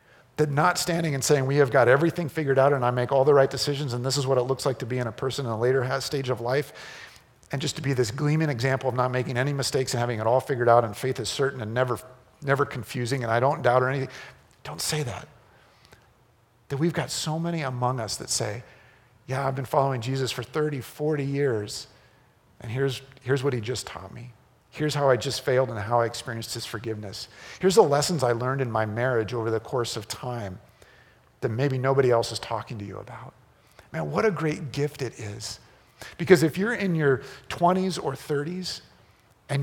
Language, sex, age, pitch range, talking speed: English, male, 50-69, 120-145 Hz, 220 wpm